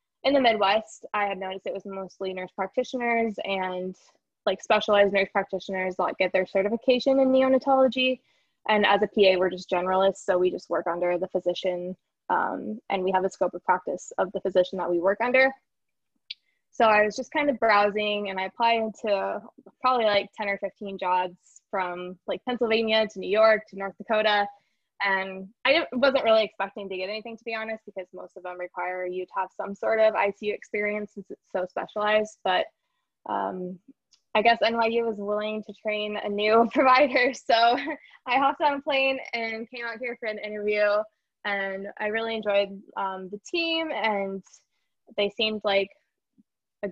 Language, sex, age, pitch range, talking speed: English, female, 20-39, 190-230 Hz, 180 wpm